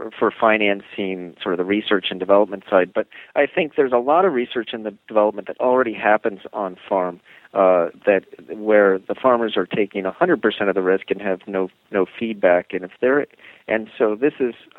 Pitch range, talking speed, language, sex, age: 95-115 Hz, 205 wpm, English, male, 40-59